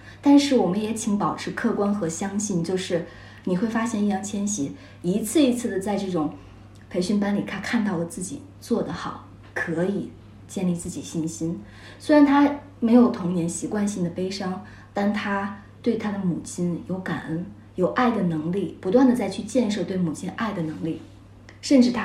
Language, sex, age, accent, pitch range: Chinese, female, 20-39, native, 160-210 Hz